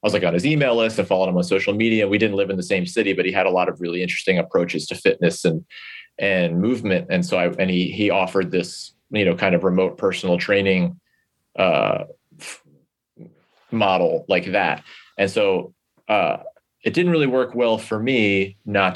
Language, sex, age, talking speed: English, male, 30-49, 205 wpm